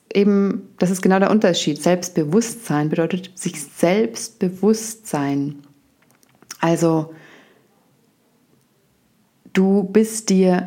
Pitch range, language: 160-190 Hz, German